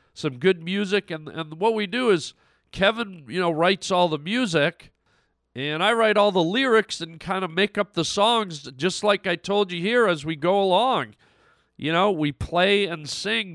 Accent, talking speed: American, 200 wpm